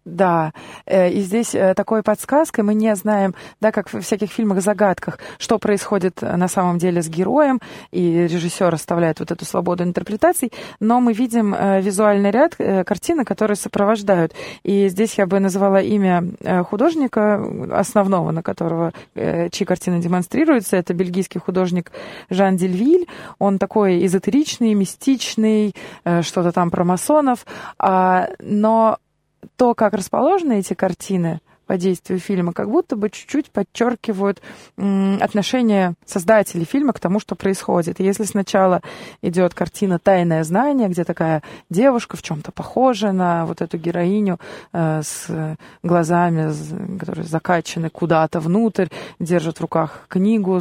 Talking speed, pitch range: 130 wpm, 175-215 Hz